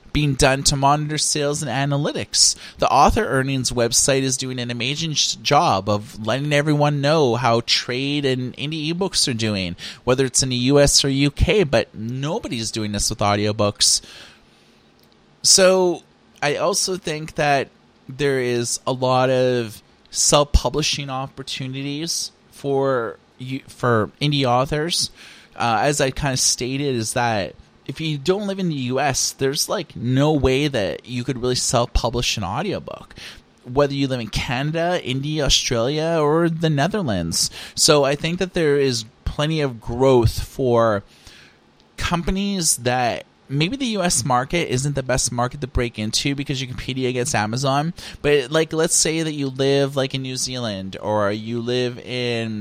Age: 30-49